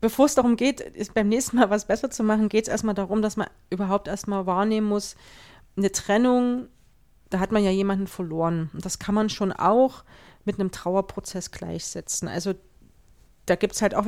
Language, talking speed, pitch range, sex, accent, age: German, 190 wpm, 195-230 Hz, female, German, 30-49